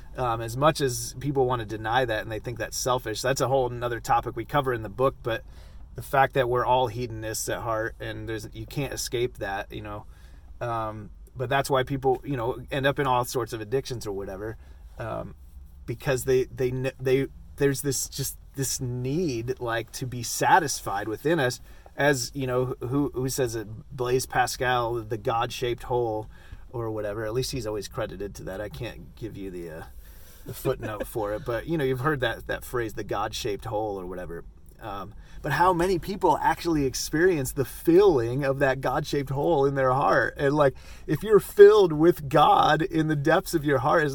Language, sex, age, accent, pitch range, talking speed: English, male, 30-49, American, 110-140 Hz, 200 wpm